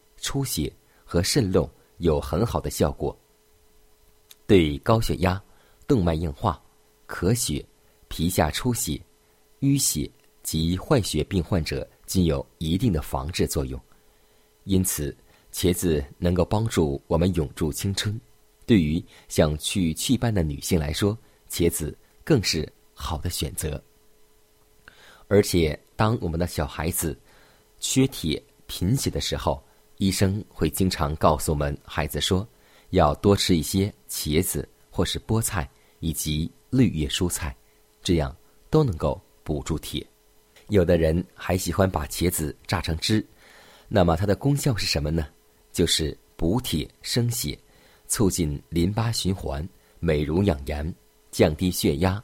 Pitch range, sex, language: 80-100 Hz, male, Chinese